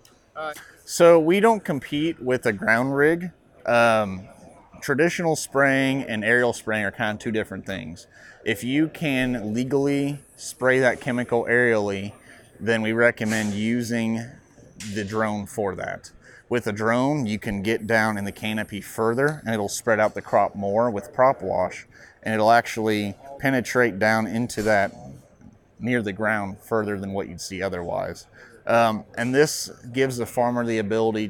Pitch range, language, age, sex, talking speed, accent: 105-120 Hz, English, 30-49, male, 155 wpm, American